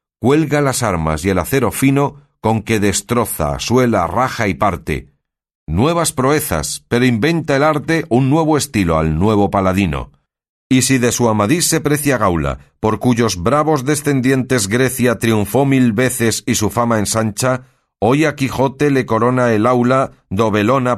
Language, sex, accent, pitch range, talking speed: Spanish, male, Spanish, 100-140 Hz, 155 wpm